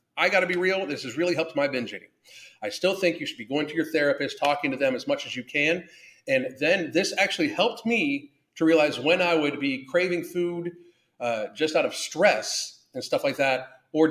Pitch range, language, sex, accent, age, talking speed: 140-180 Hz, English, male, American, 40-59, 230 wpm